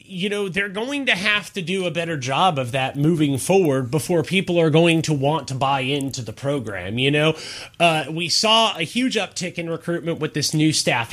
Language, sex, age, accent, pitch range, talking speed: English, male, 30-49, American, 135-185 Hz, 215 wpm